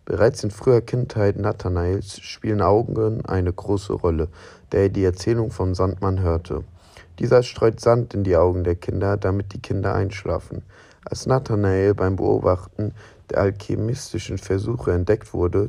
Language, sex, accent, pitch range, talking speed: German, male, German, 90-110 Hz, 145 wpm